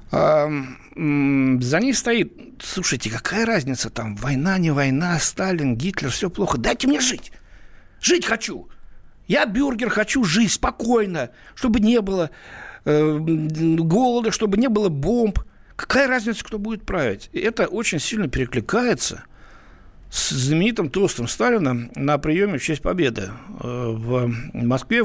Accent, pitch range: native, 125-185 Hz